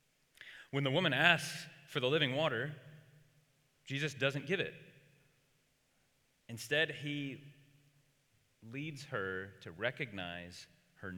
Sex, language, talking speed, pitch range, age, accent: male, English, 100 wpm, 115-150 Hz, 30-49, American